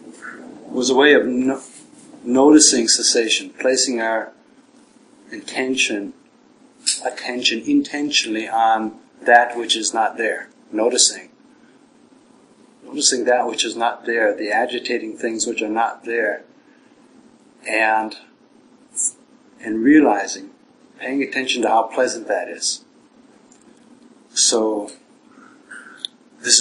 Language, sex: English, male